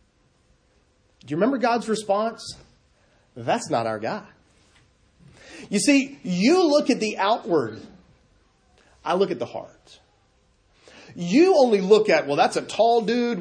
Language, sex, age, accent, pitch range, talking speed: English, male, 30-49, American, 130-200 Hz, 135 wpm